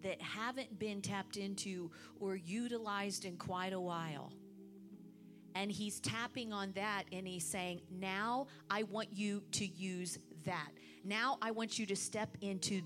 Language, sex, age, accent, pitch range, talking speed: English, female, 40-59, American, 190-235 Hz, 155 wpm